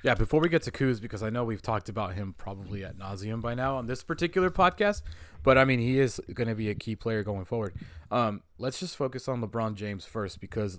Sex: male